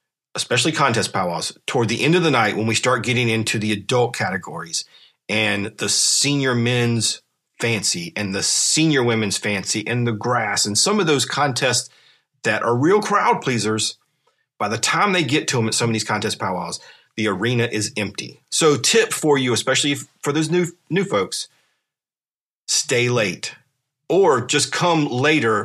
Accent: American